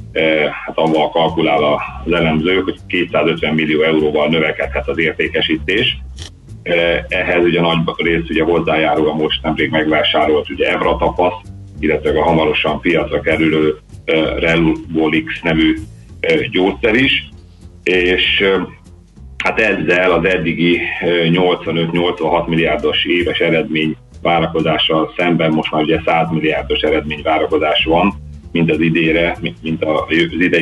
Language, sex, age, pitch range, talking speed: Hungarian, male, 40-59, 75-90 Hz, 110 wpm